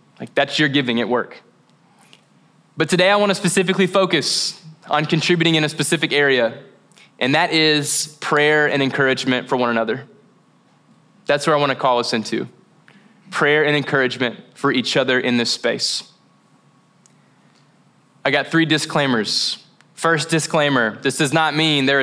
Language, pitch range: English, 125-165 Hz